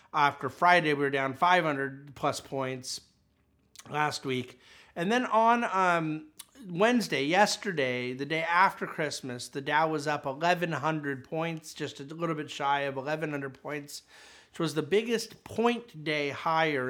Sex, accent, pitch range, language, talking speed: male, American, 130-160 Hz, English, 145 wpm